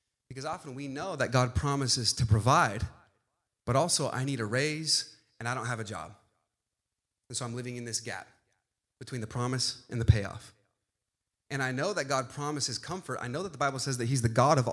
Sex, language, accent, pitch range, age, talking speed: male, English, American, 115-155 Hz, 30-49, 210 wpm